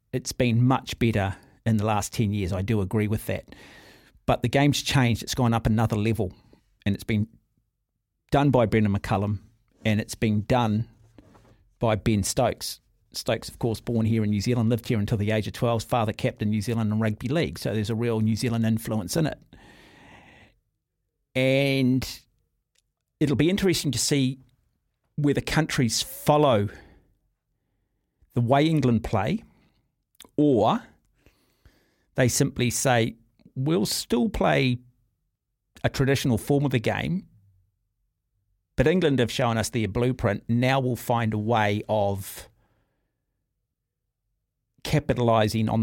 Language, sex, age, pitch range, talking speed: English, male, 40-59, 105-125 Hz, 145 wpm